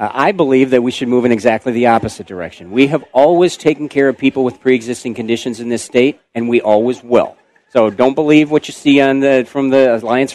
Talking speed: 225 wpm